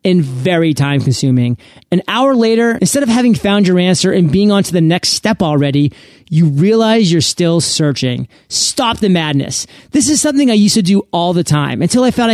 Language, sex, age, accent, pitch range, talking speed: English, male, 30-49, American, 165-215 Hz, 205 wpm